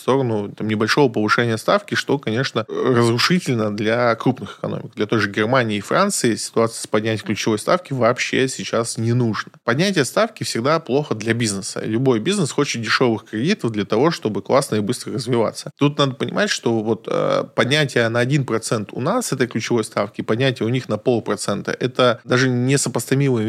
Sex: male